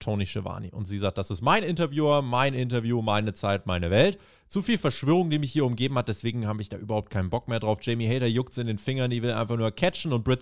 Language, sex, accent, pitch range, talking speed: German, male, German, 105-140 Hz, 260 wpm